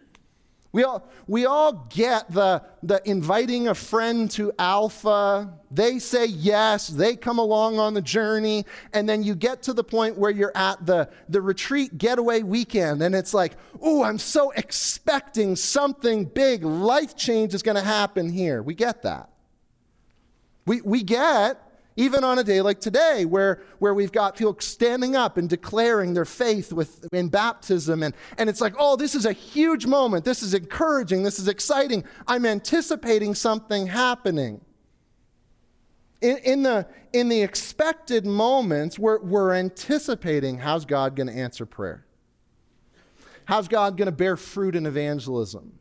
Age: 30-49